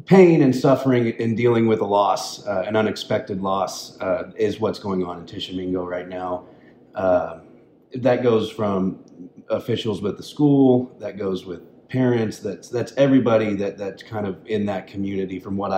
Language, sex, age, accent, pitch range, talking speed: English, male, 30-49, American, 95-115 Hz, 170 wpm